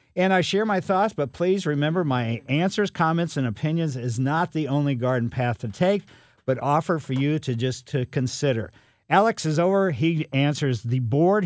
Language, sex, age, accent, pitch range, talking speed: English, male, 50-69, American, 120-160 Hz, 190 wpm